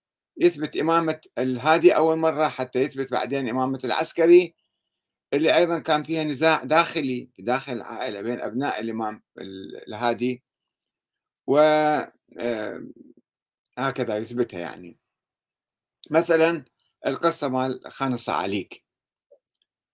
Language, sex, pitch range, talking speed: Arabic, male, 120-160 Hz, 90 wpm